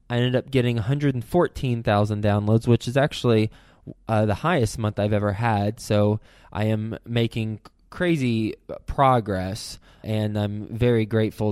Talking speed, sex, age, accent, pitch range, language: 135 wpm, male, 20-39, American, 105-125 Hz, English